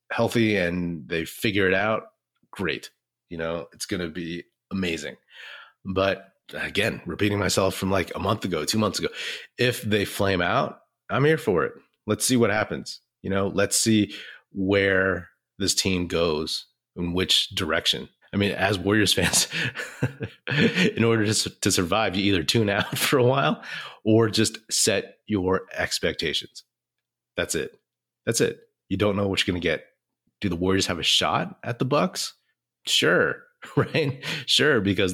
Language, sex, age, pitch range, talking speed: English, male, 30-49, 90-110 Hz, 165 wpm